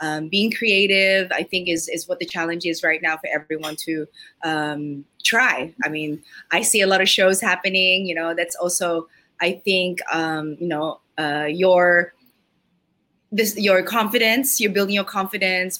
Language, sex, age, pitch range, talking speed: English, female, 20-39, 170-205 Hz, 170 wpm